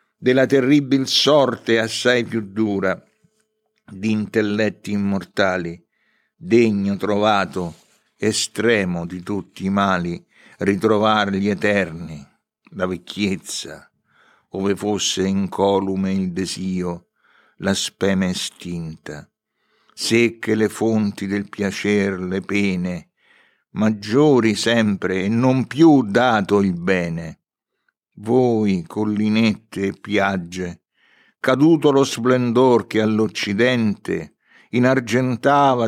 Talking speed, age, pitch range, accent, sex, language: 90 wpm, 60-79, 95-115 Hz, native, male, Italian